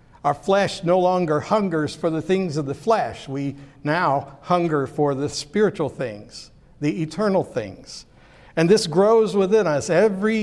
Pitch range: 145-180 Hz